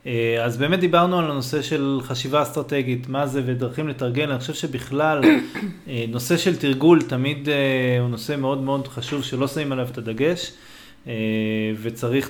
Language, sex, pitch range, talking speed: Hebrew, male, 115-140 Hz, 140 wpm